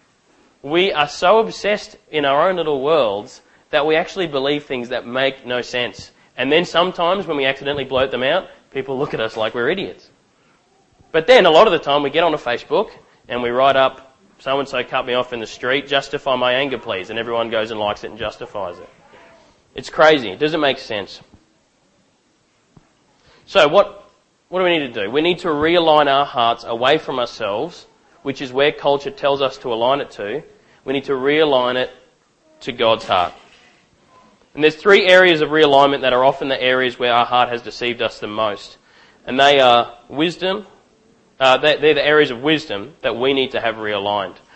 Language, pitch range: English, 125-155 Hz